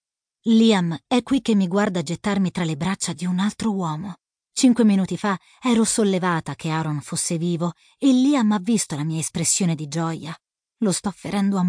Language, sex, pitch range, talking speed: Italian, female, 165-225 Hz, 185 wpm